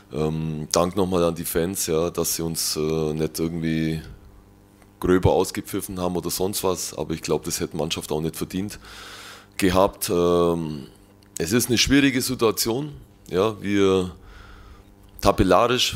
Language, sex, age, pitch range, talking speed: German, male, 20-39, 85-100 Hz, 145 wpm